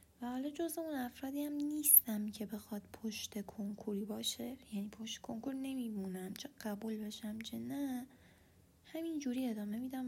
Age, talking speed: 20-39, 135 wpm